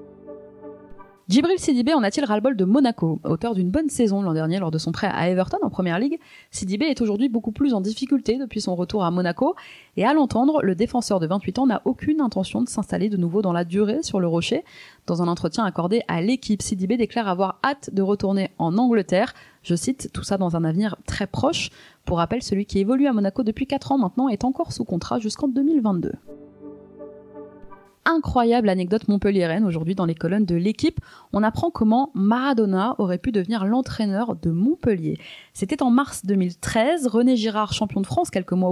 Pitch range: 190-255 Hz